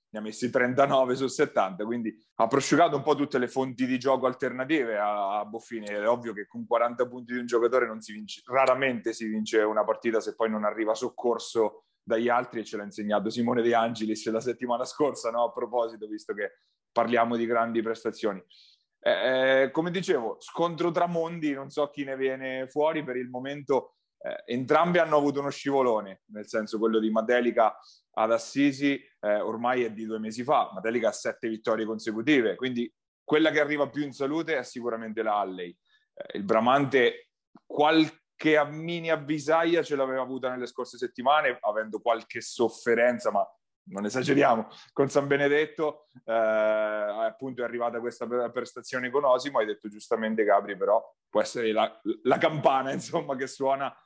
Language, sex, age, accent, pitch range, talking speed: Italian, male, 30-49, native, 115-145 Hz, 175 wpm